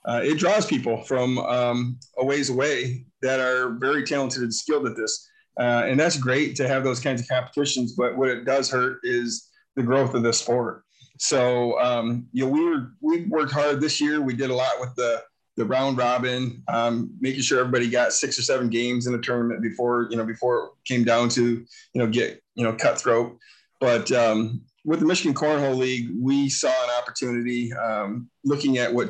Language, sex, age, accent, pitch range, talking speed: English, male, 30-49, American, 120-135 Hz, 205 wpm